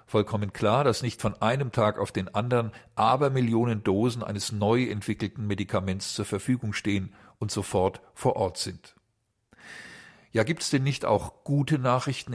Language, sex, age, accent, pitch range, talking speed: German, male, 50-69, German, 100-125 Hz, 150 wpm